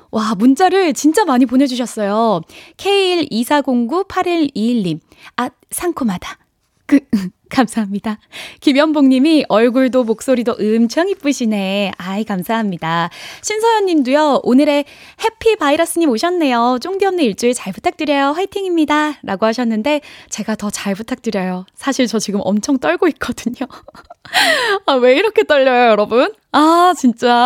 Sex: female